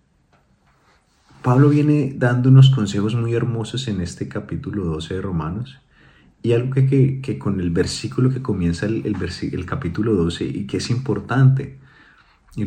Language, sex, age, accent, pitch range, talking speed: Spanish, male, 30-49, Colombian, 95-130 Hz, 150 wpm